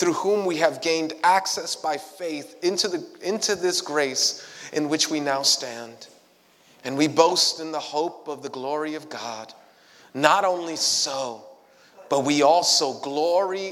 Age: 30-49